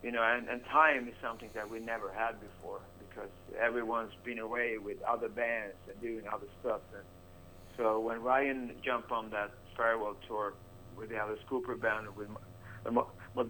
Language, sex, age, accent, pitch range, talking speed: English, male, 60-79, American, 100-125 Hz, 170 wpm